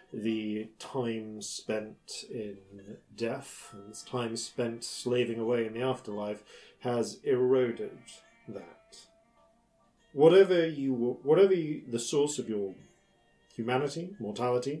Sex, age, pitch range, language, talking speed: male, 40-59, 110-155 Hz, English, 115 wpm